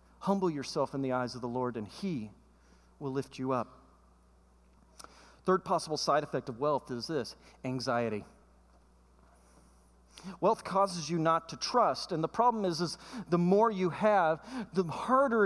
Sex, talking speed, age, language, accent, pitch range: male, 155 wpm, 40-59, English, American, 180-240 Hz